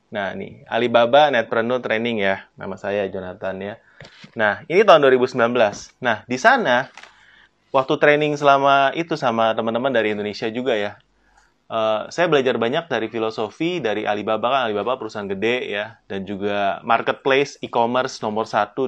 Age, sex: 20-39, male